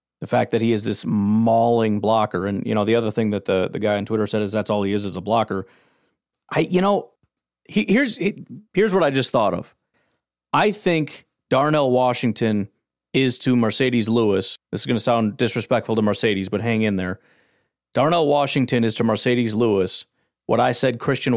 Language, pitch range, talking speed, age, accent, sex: English, 105-140 Hz, 200 wpm, 40-59, American, male